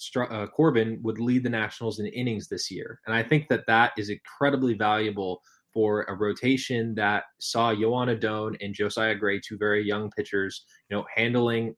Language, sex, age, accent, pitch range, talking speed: English, male, 20-39, American, 105-120 Hz, 180 wpm